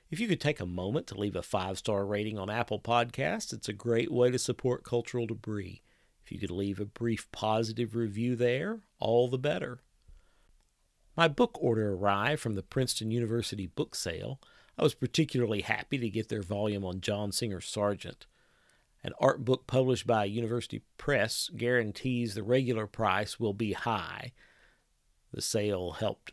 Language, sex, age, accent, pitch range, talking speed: English, male, 50-69, American, 100-125 Hz, 165 wpm